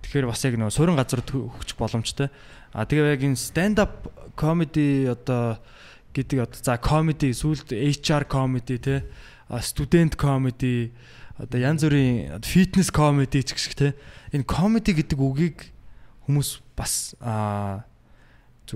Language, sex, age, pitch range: Korean, male, 20-39, 115-150 Hz